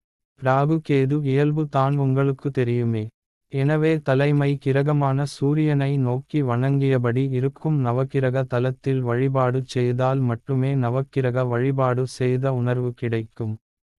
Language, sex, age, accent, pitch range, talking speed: Tamil, male, 30-49, native, 125-140 Hz, 95 wpm